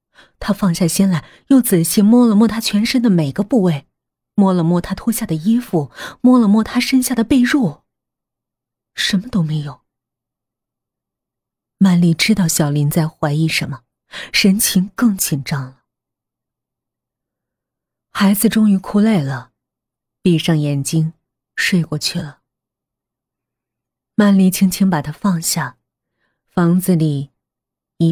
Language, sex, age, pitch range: Chinese, female, 30-49, 155-210 Hz